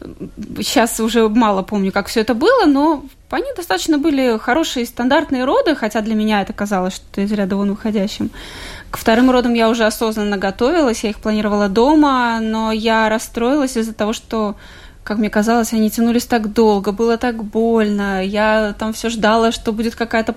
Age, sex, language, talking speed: 20-39, female, Russian, 175 wpm